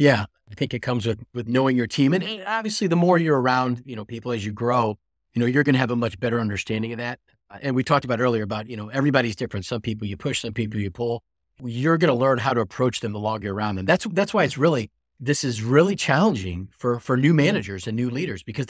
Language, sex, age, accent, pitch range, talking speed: English, male, 40-59, American, 110-140 Hz, 260 wpm